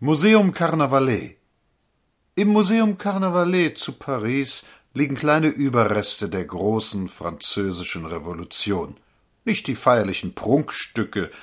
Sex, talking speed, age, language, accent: male, 95 wpm, 60-79, German, German